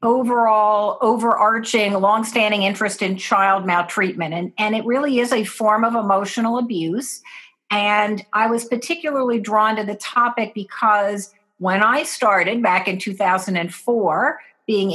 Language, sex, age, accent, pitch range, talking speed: English, female, 50-69, American, 190-230 Hz, 135 wpm